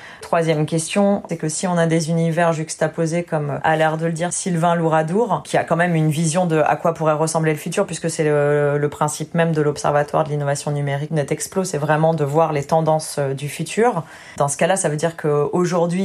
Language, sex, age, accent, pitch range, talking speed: French, female, 30-49, French, 155-170 Hz, 215 wpm